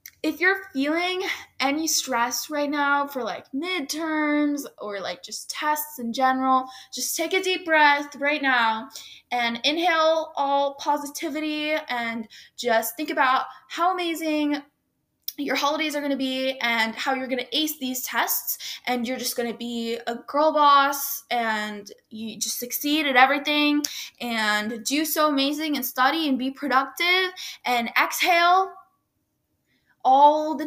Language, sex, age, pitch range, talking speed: English, female, 10-29, 235-300 Hz, 140 wpm